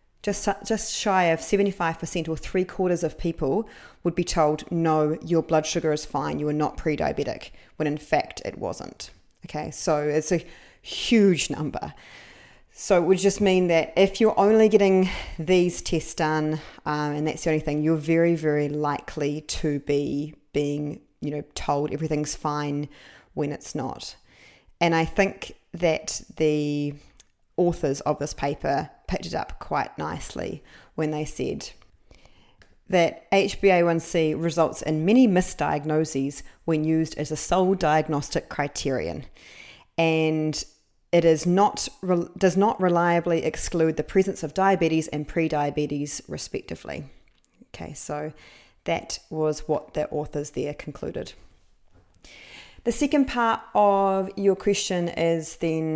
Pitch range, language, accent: 150-185 Hz, English, Australian